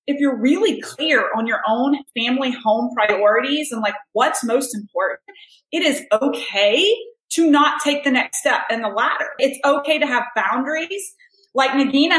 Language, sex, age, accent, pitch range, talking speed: English, female, 30-49, American, 235-300 Hz, 165 wpm